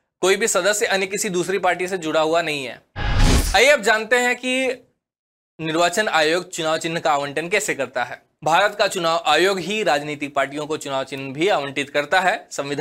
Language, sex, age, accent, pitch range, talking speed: Hindi, male, 20-39, native, 160-205 Hz, 110 wpm